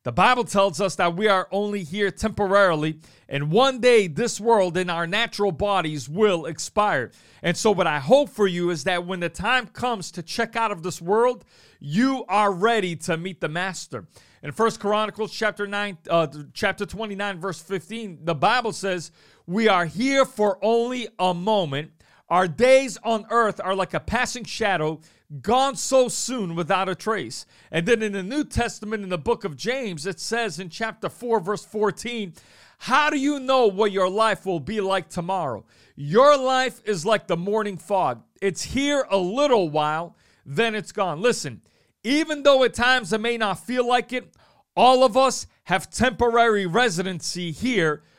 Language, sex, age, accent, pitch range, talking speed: English, male, 40-59, American, 180-235 Hz, 180 wpm